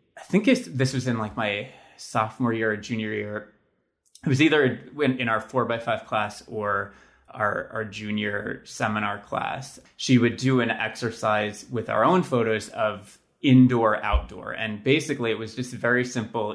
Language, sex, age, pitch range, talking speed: English, male, 20-39, 105-125 Hz, 165 wpm